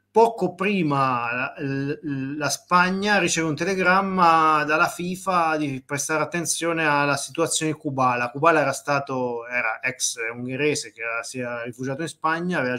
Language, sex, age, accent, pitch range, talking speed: Italian, male, 30-49, native, 130-165 Hz, 145 wpm